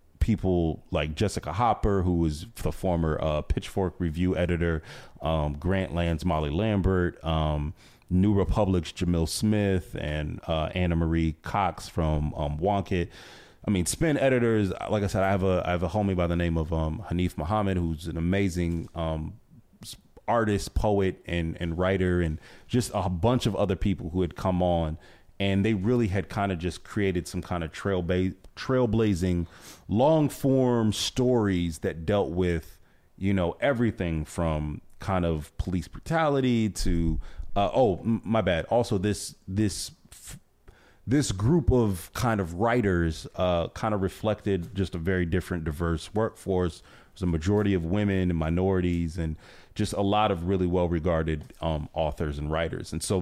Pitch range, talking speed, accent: 85-105 Hz, 165 wpm, American